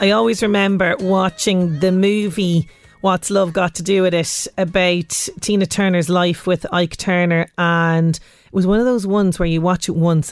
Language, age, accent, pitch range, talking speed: English, 30-49, Irish, 165-190 Hz, 185 wpm